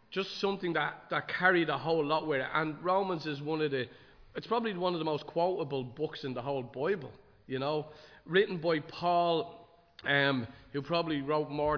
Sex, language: male, English